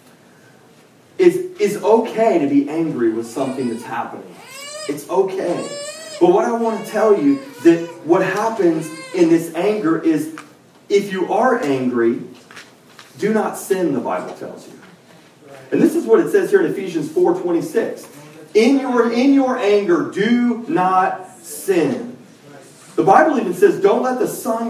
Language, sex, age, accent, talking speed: English, male, 30-49, American, 155 wpm